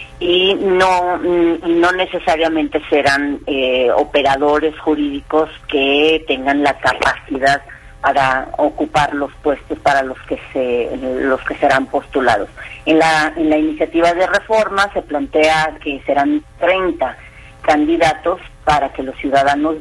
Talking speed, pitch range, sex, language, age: 125 wpm, 140-165 Hz, female, Spanish, 40-59